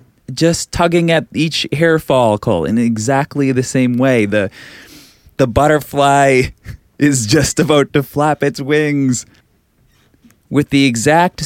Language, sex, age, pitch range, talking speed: English, male, 20-39, 115-150 Hz, 125 wpm